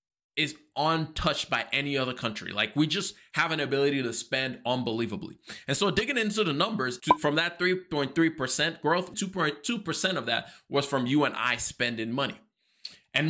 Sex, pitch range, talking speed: male, 125-165 Hz, 165 wpm